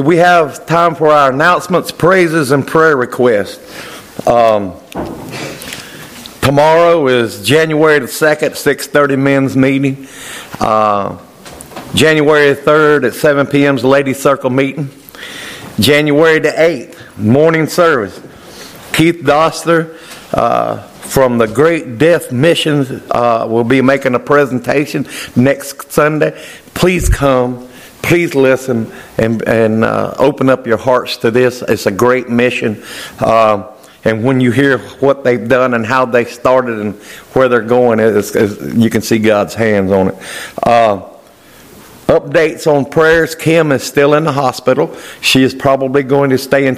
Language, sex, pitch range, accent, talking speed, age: English, male, 115-145 Hz, American, 135 wpm, 50-69